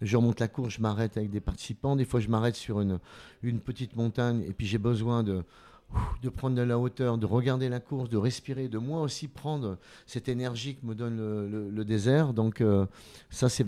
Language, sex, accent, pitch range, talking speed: French, male, French, 110-135 Hz, 220 wpm